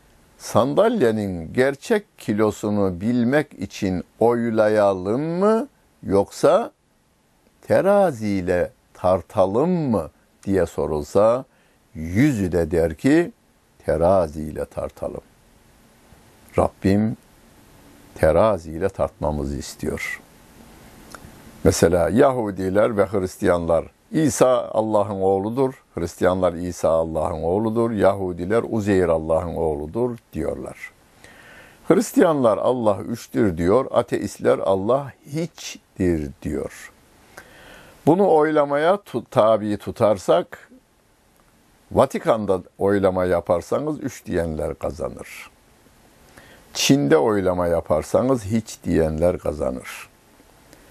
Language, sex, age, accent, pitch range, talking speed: Turkish, male, 60-79, native, 85-115 Hz, 75 wpm